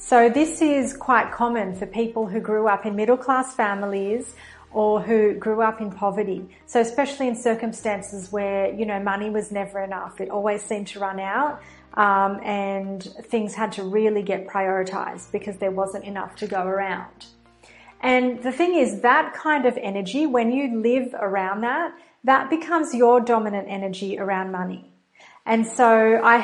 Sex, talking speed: female, 170 wpm